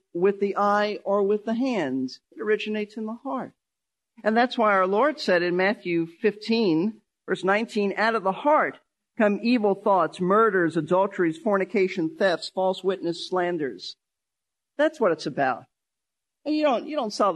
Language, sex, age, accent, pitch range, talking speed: English, male, 50-69, American, 180-225 Hz, 155 wpm